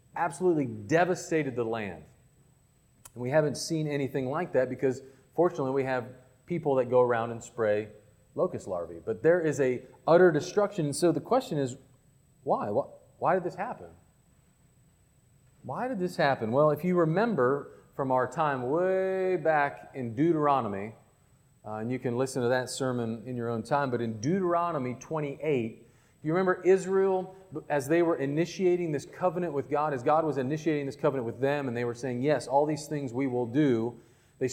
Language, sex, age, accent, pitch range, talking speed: English, male, 40-59, American, 125-170 Hz, 175 wpm